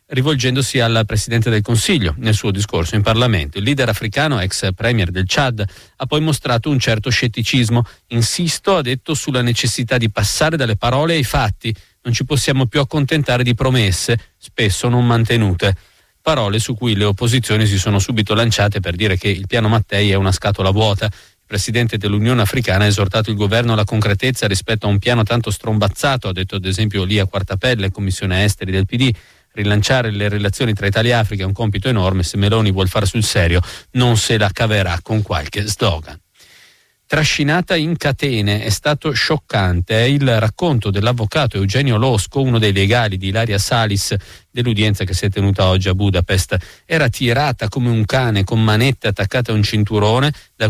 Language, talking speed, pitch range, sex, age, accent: Italian, 180 wpm, 100-125 Hz, male, 40-59, native